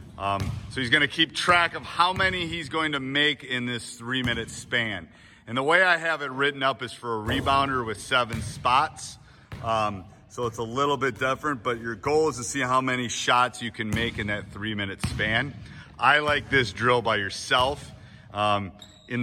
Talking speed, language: 205 wpm, English